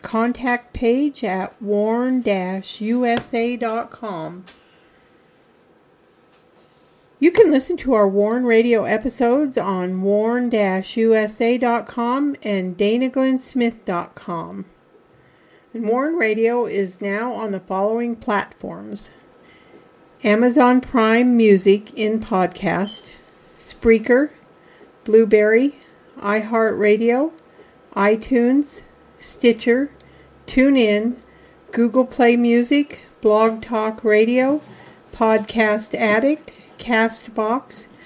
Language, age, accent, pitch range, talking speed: English, 50-69, American, 215-255 Hz, 70 wpm